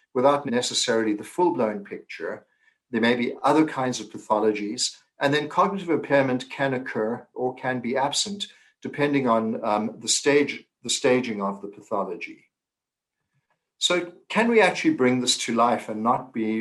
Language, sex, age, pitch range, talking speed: English, male, 60-79, 110-145 Hz, 155 wpm